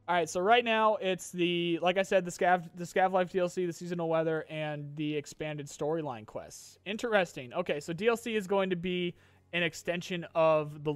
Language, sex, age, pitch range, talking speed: English, male, 30-49, 145-185 Hz, 195 wpm